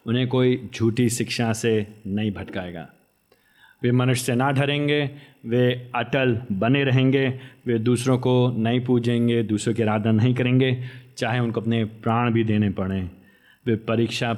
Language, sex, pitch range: Hindi, male, 110-130 Hz